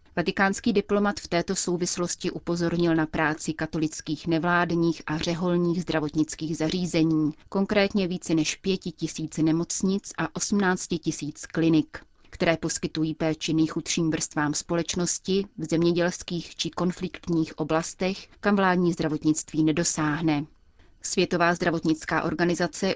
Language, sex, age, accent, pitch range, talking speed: Czech, female, 30-49, native, 155-180 Hz, 110 wpm